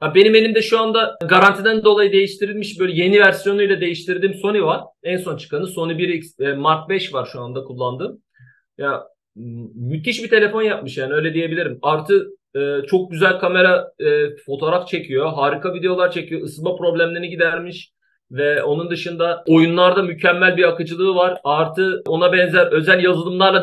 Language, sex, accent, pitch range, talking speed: Turkish, male, native, 170-205 Hz, 150 wpm